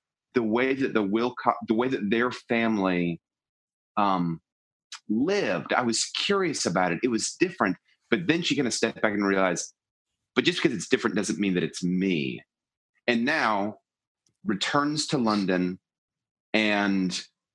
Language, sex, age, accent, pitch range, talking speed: English, male, 30-49, American, 85-115 Hz, 155 wpm